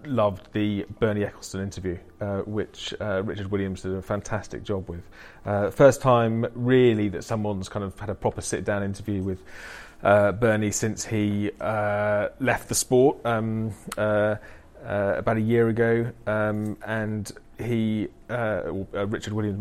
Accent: British